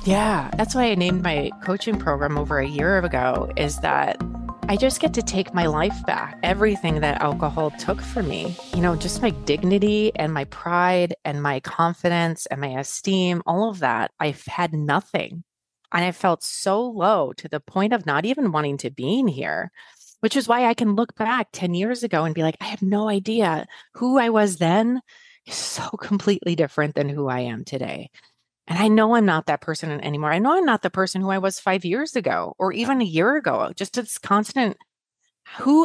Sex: female